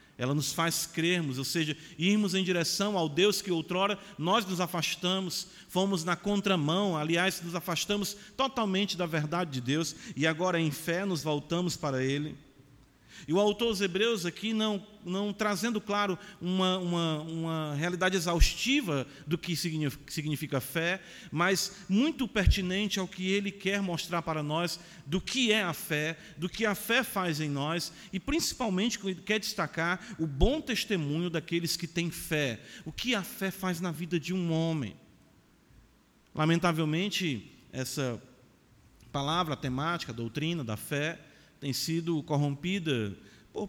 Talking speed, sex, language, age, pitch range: 150 wpm, male, Portuguese, 40-59, 155-200 Hz